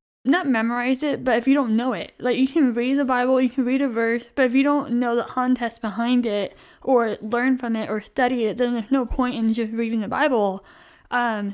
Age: 10-29